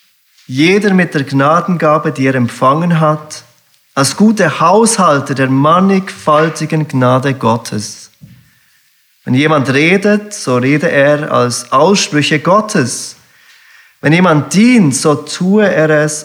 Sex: male